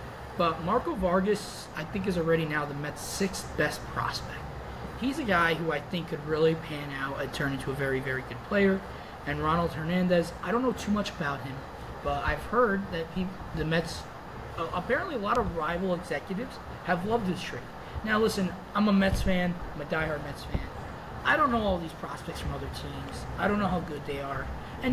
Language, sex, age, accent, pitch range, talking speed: English, male, 20-39, American, 150-195 Hz, 205 wpm